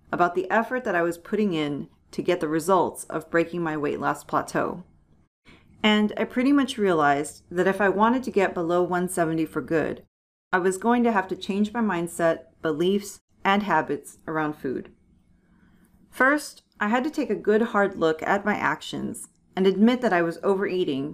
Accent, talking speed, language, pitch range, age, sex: American, 185 wpm, English, 170-210 Hz, 40-59, female